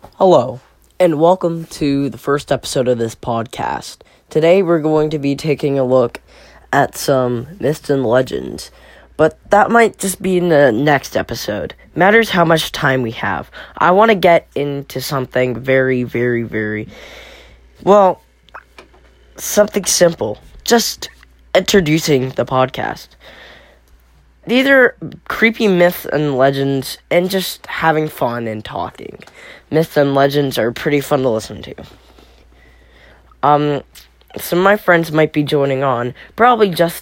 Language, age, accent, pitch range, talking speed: English, 10-29, American, 125-170 Hz, 140 wpm